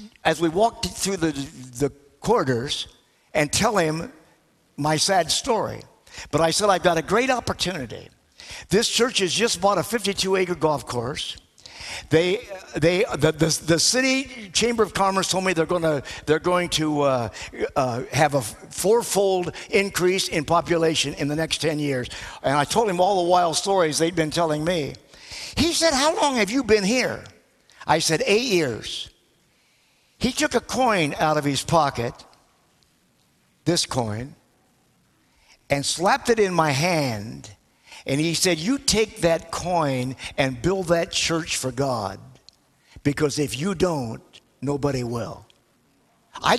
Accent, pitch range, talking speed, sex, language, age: American, 140-190 Hz, 155 wpm, male, English, 60-79